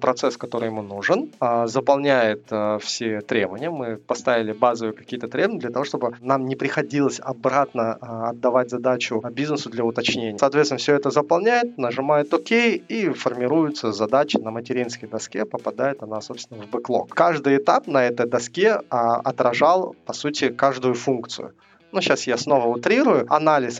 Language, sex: Russian, male